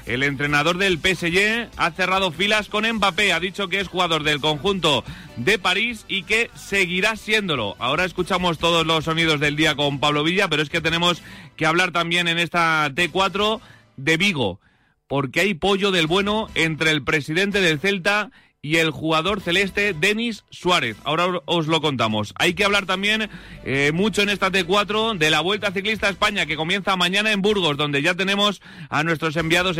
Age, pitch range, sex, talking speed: 30-49, 150-195 Hz, male, 180 wpm